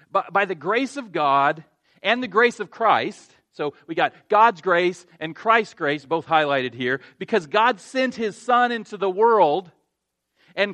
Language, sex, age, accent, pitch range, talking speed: English, male, 40-59, American, 155-220 Hz, 170 wpm